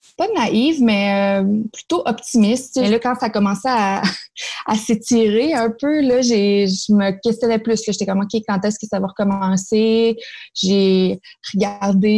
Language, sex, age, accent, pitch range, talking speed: French, female, 20-39, Canadian, 190-215 Hz, 165 wpm